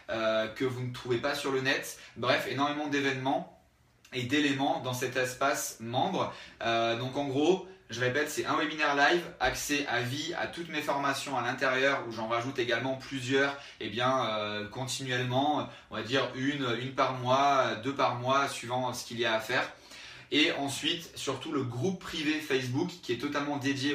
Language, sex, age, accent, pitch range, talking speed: French, male, 20-39, French, 125-145 Hz, 185 wpm